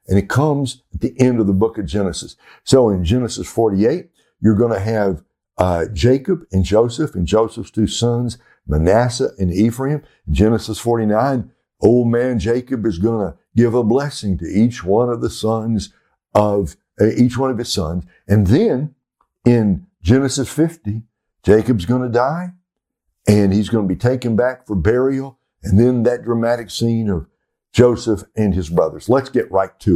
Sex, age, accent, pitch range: male, 60-79, American, 100-125 Hz